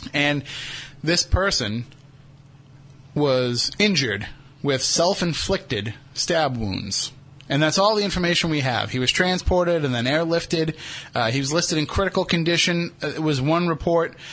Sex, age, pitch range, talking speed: male, 30-49, 130-155 Hz, 140 wpm